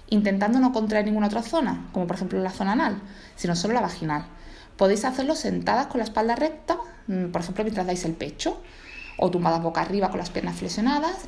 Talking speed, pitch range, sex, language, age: 195 wpm, 180-220 Hz, female, Spanish, 20-39